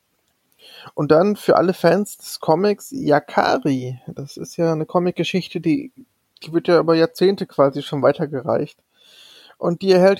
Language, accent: German, German